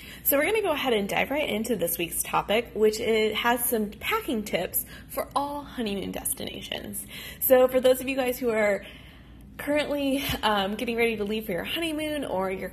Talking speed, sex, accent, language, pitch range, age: 200 wpm, female, American, English, 200-260 Hz, 20-39